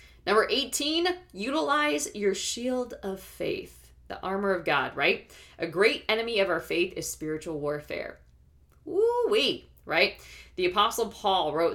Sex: female